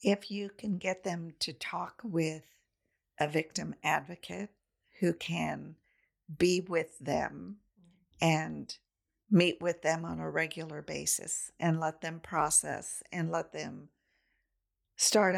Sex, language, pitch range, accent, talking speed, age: female, English, 150-185 Hz, American, 125 wpm, 50-69